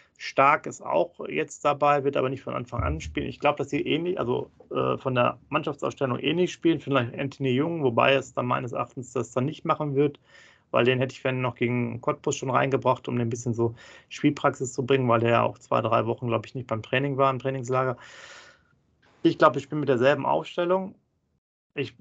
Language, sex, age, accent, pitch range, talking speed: German, male, 30-49, German, 120-140 Hz, 220 wpm